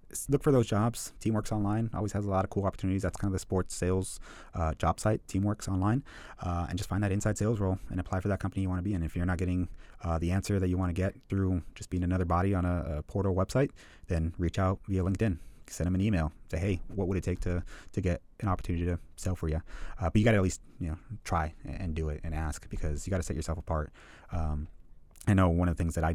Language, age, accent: English, 30-49, American